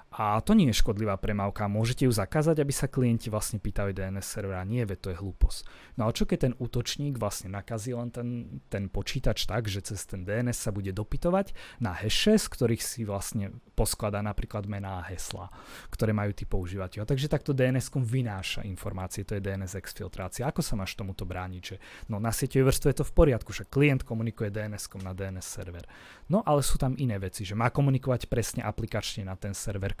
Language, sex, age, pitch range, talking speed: Slovak, male, 20-39, 100-125 Hz, 200 wpm